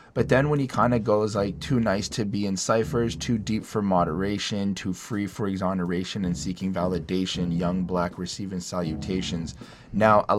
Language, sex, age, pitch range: English, male, 20-39, 90-115 Hz